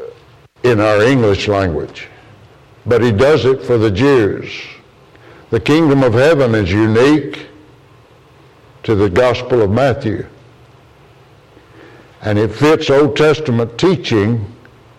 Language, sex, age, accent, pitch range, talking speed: English, male, 60-79, American, 115-145 Hz, 110 wpm